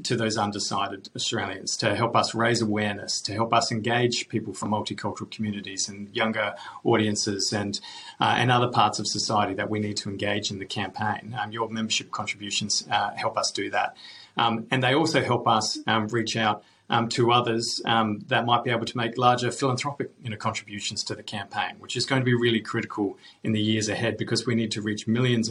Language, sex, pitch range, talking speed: English, male, 105-120 Hz, 205 wpm